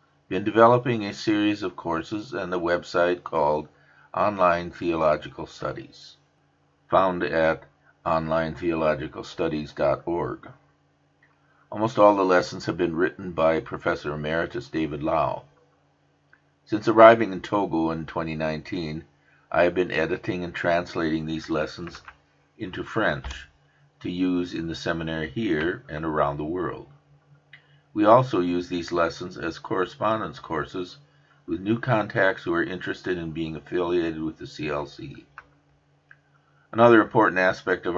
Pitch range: 80-100 Hz